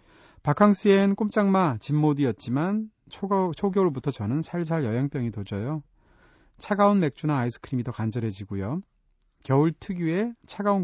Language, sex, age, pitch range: Korean, male, 40-59, 125-170 Hz